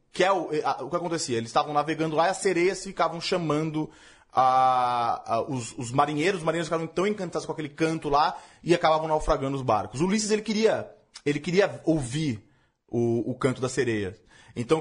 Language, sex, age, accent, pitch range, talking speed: Portuguese, male, 20-39, Brazilian, 140-185 Hz, 190 wpm